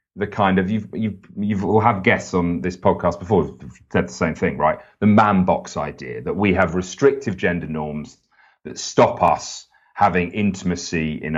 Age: 30-49